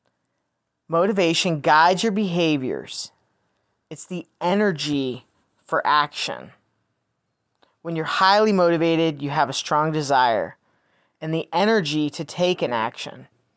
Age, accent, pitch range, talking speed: 30-49, American, 145-185 Hz, 110 wpm